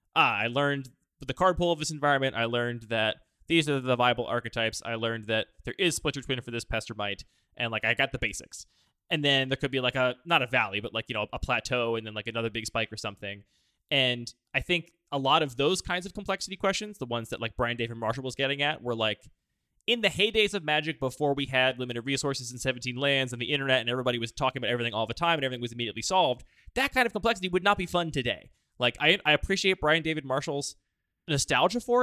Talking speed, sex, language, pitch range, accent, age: 240 wpm, male, English, 115-160 Hz, American, 20-39